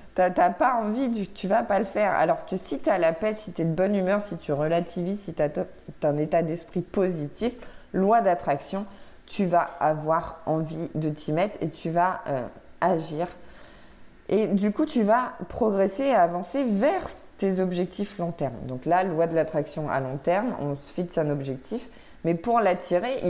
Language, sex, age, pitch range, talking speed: French, female, 20-39, 160-200 Hz, 200 wpm